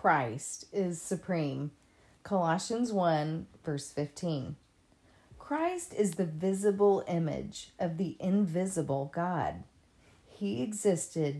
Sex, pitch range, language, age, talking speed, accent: female, 150-195 Hz, English, 40-59, 95 wpm, American